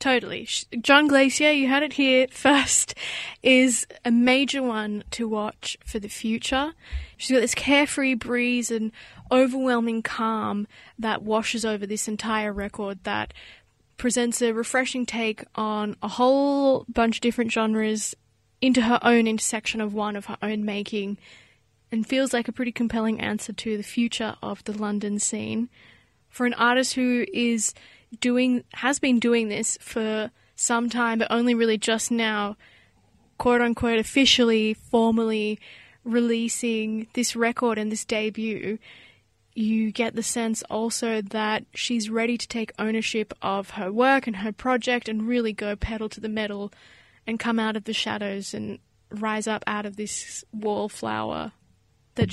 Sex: female